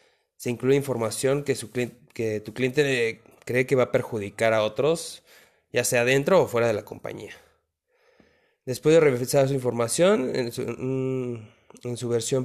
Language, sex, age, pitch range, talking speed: Spanish, male, 20-39, 115-150 Hz, 145 wpm